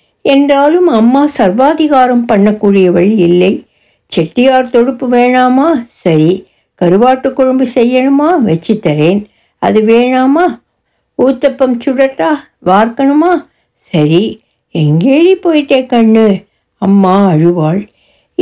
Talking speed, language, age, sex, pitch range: 80 wpm, Tamil, 60-79, female, 180-260 Hz